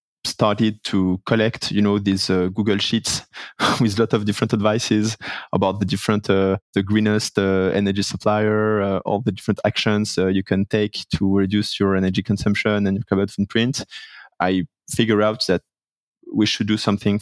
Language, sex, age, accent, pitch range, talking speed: English, male, 20-39, French, 95-110 Hz, 175 wpm